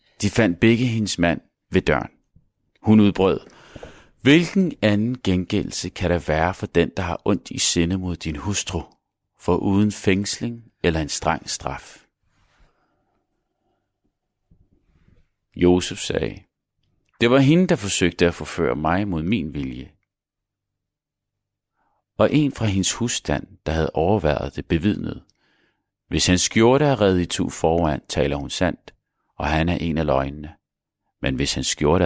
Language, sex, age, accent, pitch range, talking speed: Danish, male, 40-59, native, 80-105 Hz, 140 wpm